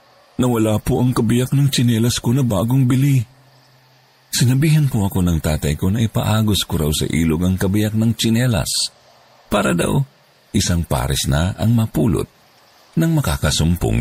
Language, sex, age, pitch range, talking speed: Filipino, male, 50-69, 80-125 Hz, 150 wpm